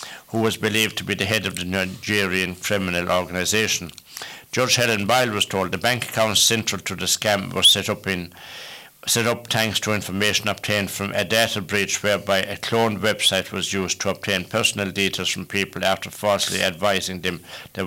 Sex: male